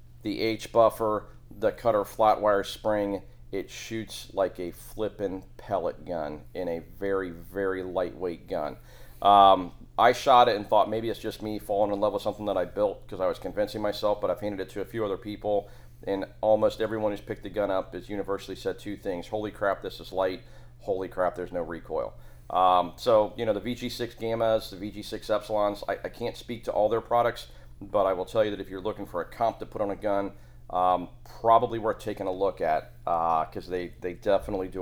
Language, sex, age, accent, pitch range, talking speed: English, male, 40-59, American, 90-110 Hz, 215 wpm